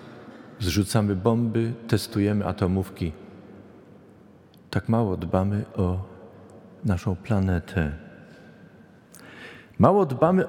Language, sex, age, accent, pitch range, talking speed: Polish, male, 50-69, native, 105-145 Hz, 70 wpm